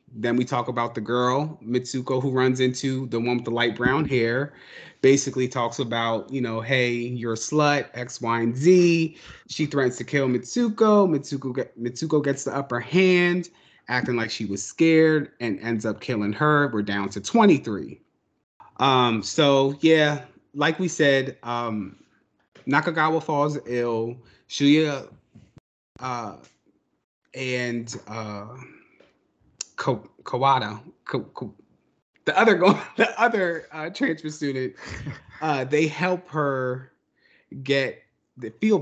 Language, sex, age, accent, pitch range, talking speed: English, male, 30-49, American, 120-155 Hz, 135 wpm